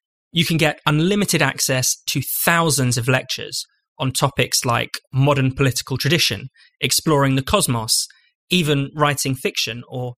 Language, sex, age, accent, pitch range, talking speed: English, male, 20-39, British, 130-150 Hz, 130 wpm